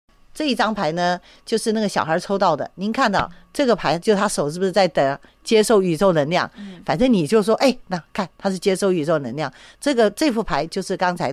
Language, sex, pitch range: Chinese, female, 180-240 Hz